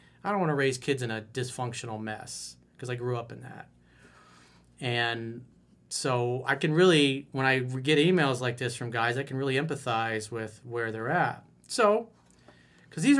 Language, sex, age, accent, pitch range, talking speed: English, male, 30-49, American, 115-160 Hz, 180 wpm